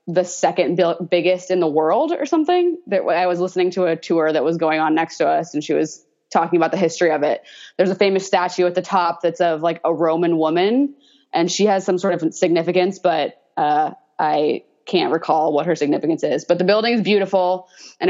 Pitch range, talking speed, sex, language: 160-185 Hz, 220 wpm, female, English